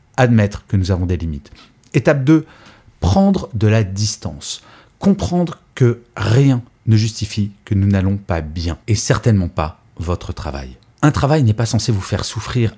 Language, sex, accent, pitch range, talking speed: French, male, French, 95-130 Hz, 165 wpm